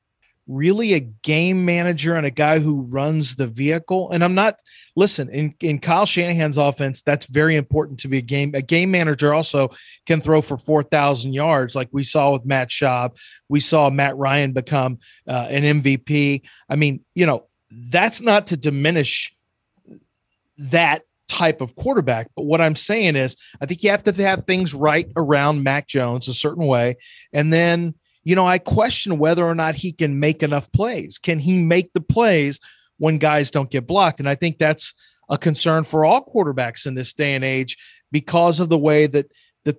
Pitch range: 140-165 Hz